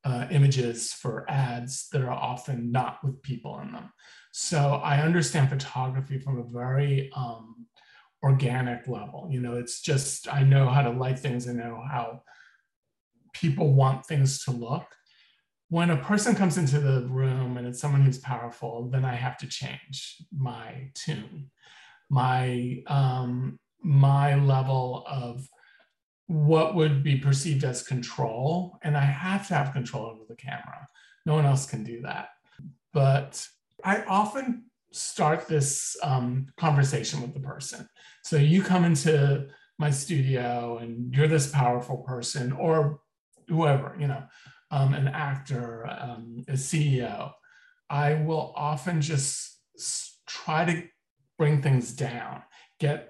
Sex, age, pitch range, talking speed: male, 40-59, 130-155 Hz, 140 wpm